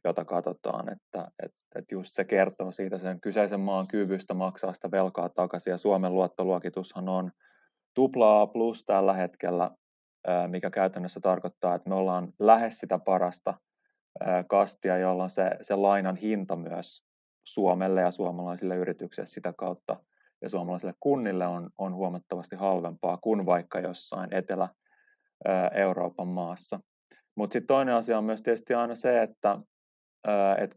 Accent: native